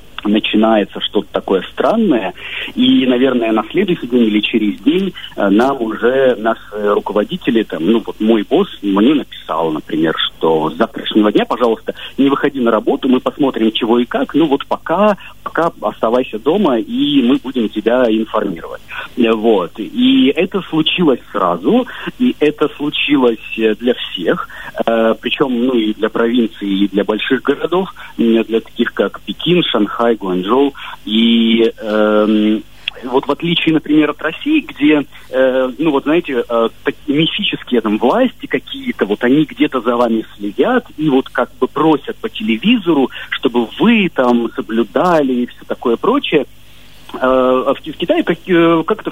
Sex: male